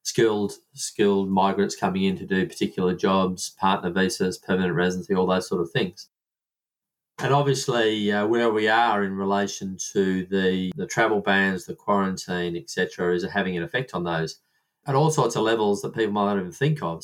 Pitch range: 95-115 Hz